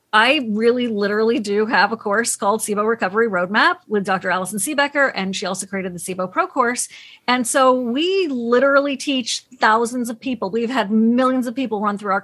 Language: English